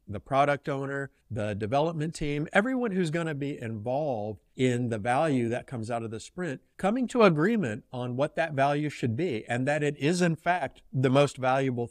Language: English